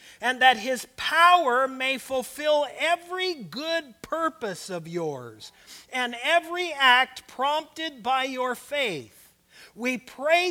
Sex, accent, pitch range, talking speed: male, American, 195-295 Hz, 115 wpm